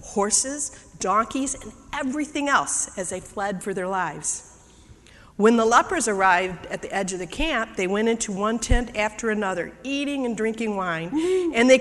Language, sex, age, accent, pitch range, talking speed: English, female, 50-69, American, 185-250 Hz, 175 wpm